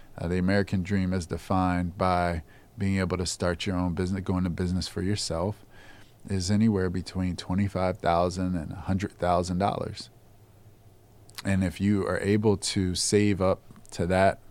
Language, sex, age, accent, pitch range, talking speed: English, male, 20-39, American, 90-105 Hz, 145 wpm